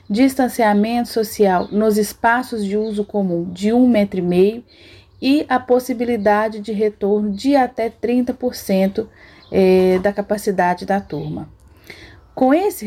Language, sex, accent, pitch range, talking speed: Portuguese, female, Brazilian, 195-235 Hz, 105 wpm